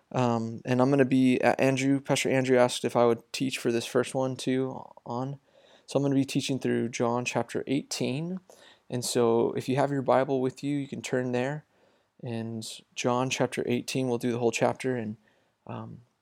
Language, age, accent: English, 20-39, American